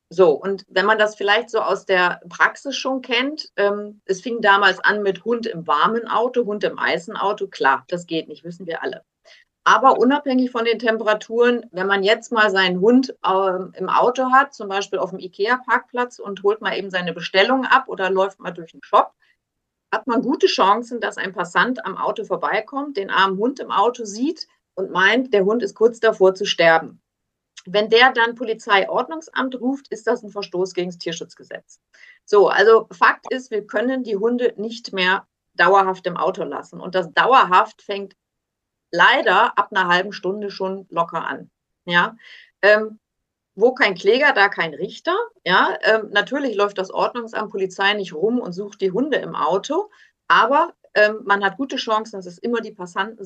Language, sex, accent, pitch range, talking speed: German, female, German, 190-240 Hz, 185 wpm